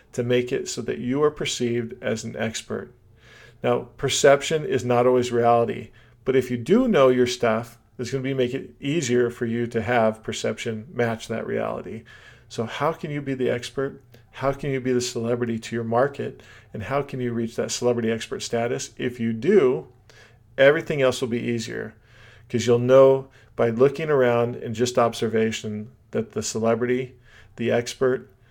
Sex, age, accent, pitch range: male, 40-59, American, 115-125 Hz